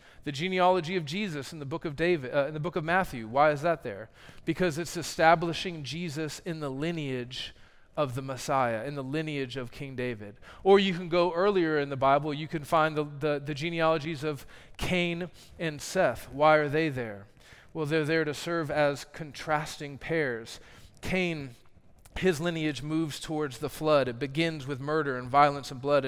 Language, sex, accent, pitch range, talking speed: English, male, American, 135-165 Hz, 185 wpm